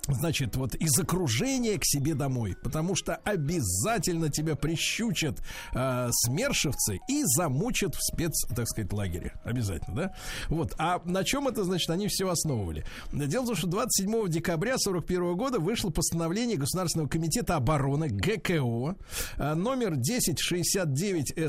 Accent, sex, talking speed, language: native, male, 135 wpm, Russian